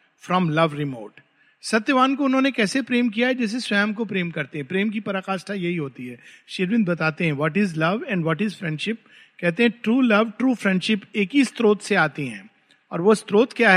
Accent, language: native, Hindi